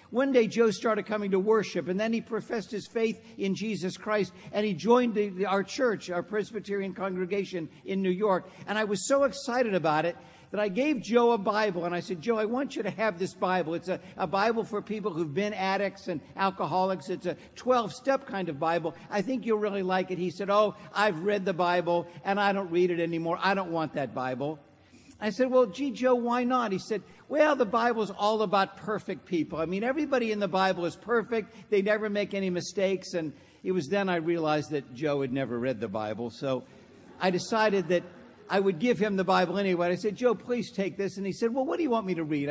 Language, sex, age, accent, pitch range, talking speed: English, male, 60-79, American, 175-220 Hz, 230 wpm